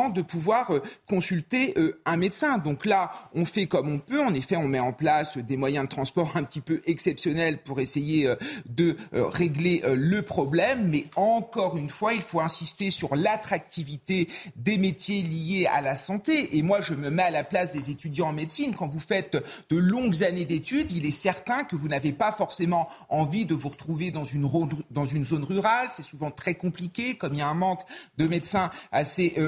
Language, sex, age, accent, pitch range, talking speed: French, male, 40-59, French, 150-195 Hz, 195 wpm